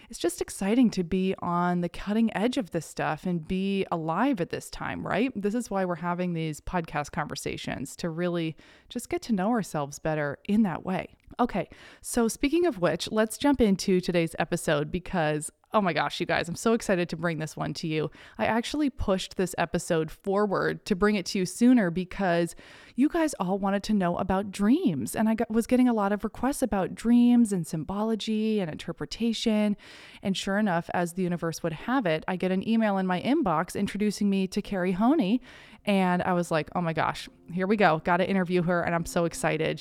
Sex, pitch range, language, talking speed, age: female, 170-215 Hz, English, 205 wpm, 20-39